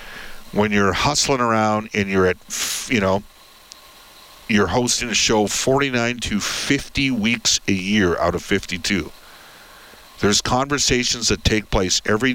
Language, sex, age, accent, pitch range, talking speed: English, male, 50-69, American, 95-120 Hz, 135 wpm